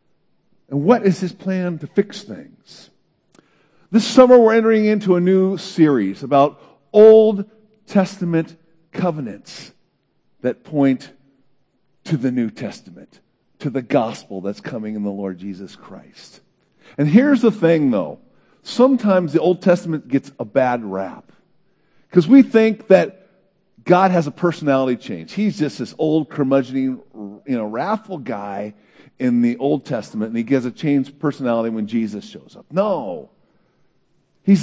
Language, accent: English, American